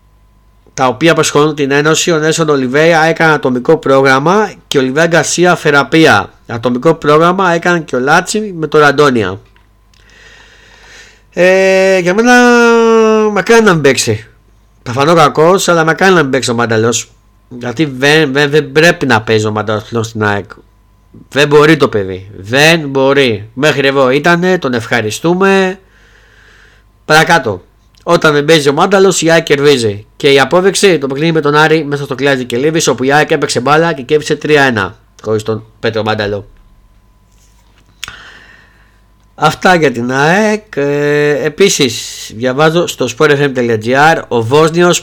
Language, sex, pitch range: Greek, male, 120-165 Hz